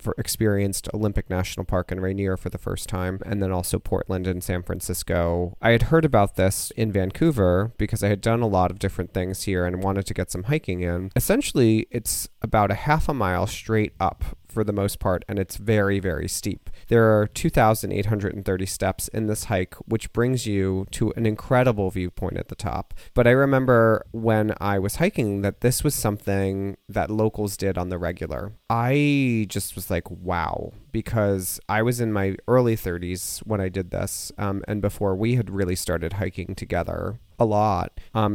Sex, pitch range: male, 95-110 Hz